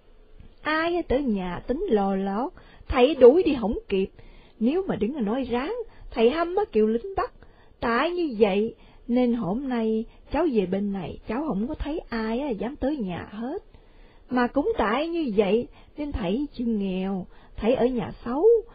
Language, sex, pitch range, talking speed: Vietnamese, female, 215-305 Hz, 175 wpm